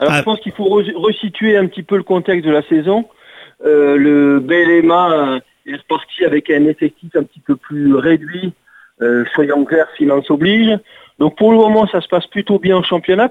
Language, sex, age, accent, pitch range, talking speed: French, male, 40-59, French, 150-185 Hz, 195 wpm